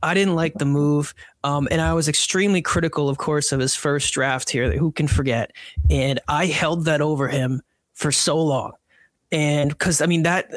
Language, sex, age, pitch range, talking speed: English, male, 30-49, 150-190 Hz, 200 wpm